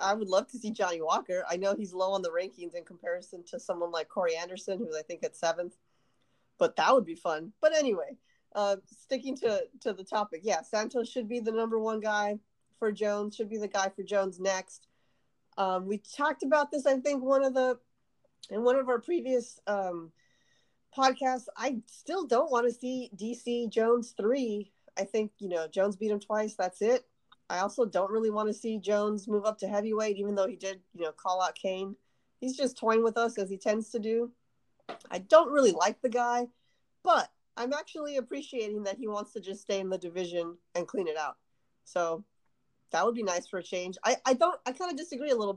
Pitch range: 190-240 Hz